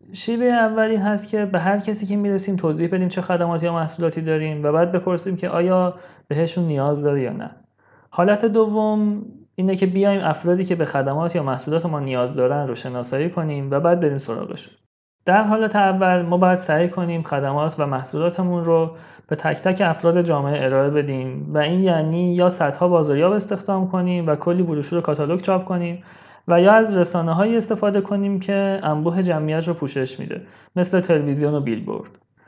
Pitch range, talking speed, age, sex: 150-190 Hz, 180 wpm, 30-49, male